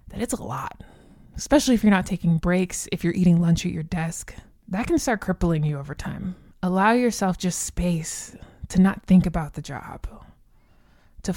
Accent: American